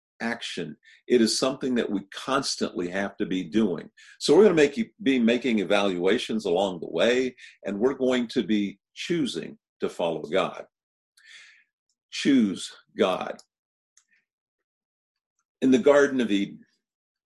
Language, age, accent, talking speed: English, 50-69, American, 130 wpm